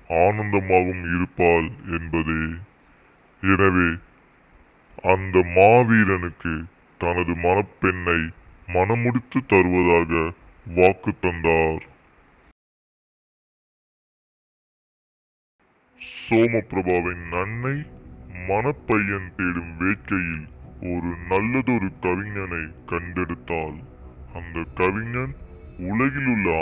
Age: 20-39